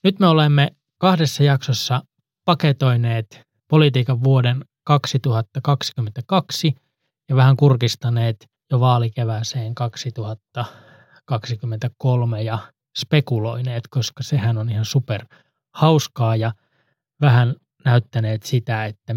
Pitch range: 115-140 Hz